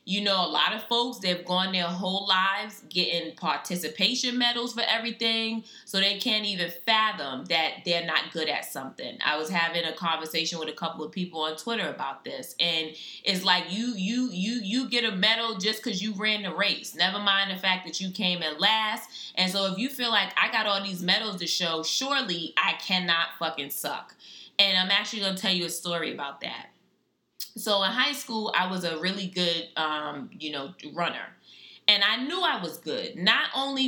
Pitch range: 165-220 Hz